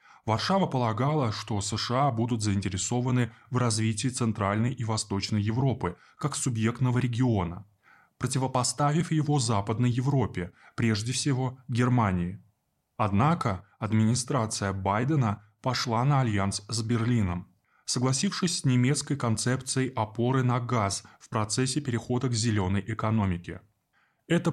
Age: 20-39